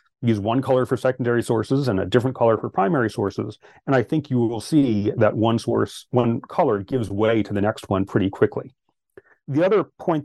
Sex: male